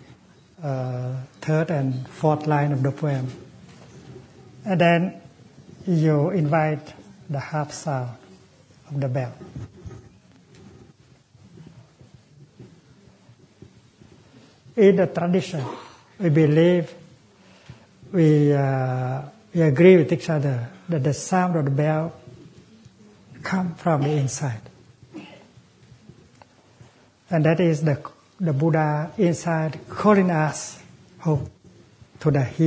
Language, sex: English, male